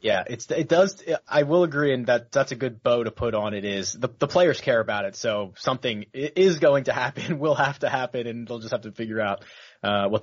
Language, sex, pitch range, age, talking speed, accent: English, male, 115-155 Hz, 30-49, 250 wpm, American